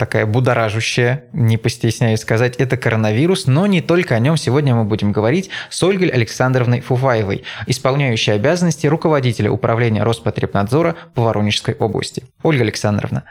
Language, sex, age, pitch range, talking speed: Russian, male, 20-39, 115-145 Hz, 135 wpm